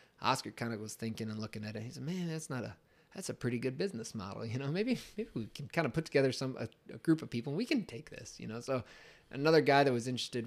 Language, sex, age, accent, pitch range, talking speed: English, male, 20-39, American, 110-135 Hz, 285 wpm